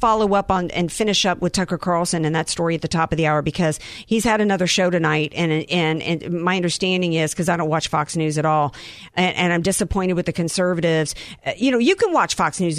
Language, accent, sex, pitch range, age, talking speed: English, American, female, 175-260 Hz, 50-69, 245 wpm